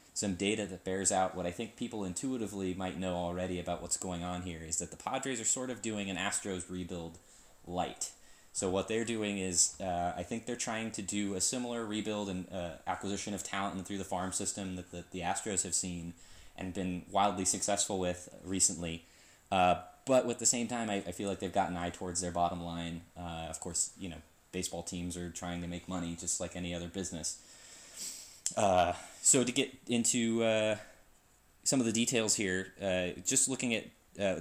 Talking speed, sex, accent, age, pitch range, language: 205 wpm, male, American, 20-39, 90-105 Hz, English